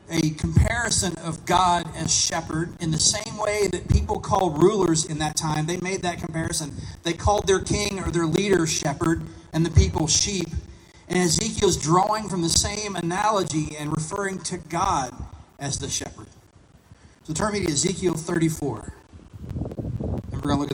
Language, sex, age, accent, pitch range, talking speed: English, male, 40-59, American, 155-190 Hz, 165 wpm